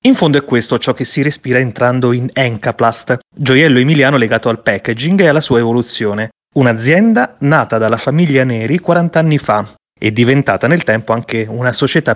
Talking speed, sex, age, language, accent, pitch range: 175 wpm, male, 30-49, Italian, native, 115-160 Hz